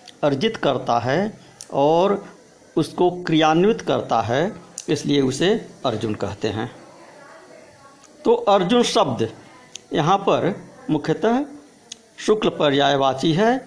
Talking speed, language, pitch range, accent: 95 wpm, Hindi, 150-235 Hz, native